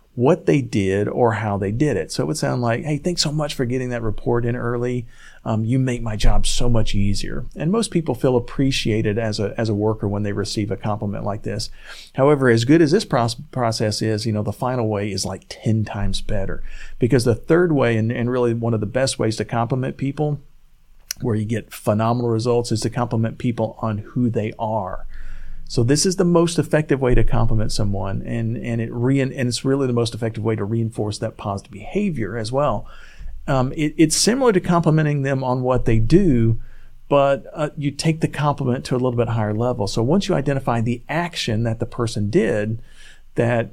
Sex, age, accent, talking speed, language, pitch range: male, 40-59, American, 215 wpm, English, 110-140 Hz